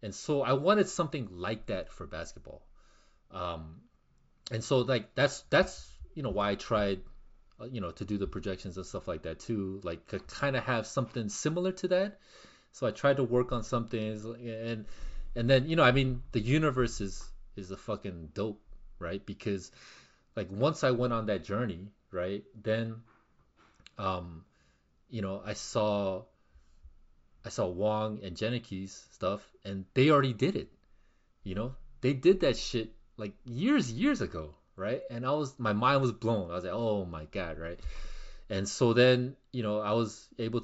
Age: 30-49